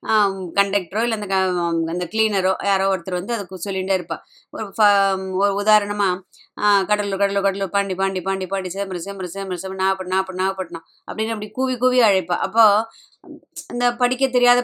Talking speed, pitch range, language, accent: 165 wpm, 185-225 Hz, Tamil, native